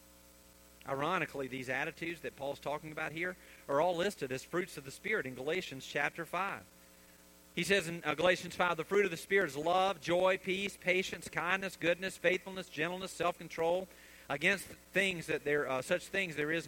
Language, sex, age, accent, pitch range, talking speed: English, male, 40-59, American, 165-255 Hz, 175 wpm